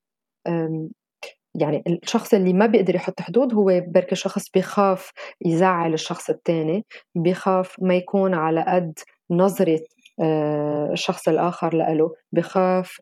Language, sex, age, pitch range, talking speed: Arabic, female, 20-39, 175-210 Hz, 125 wpm